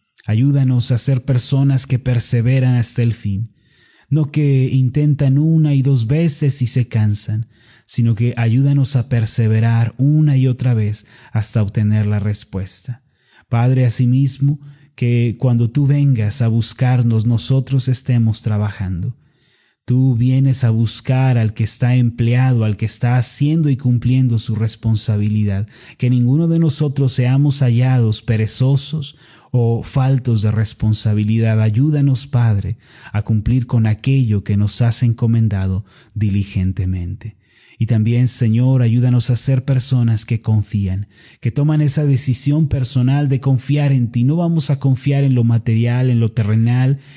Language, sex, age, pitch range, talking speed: Spanish, male, 30-49, 110-135 Hz, 135 wpm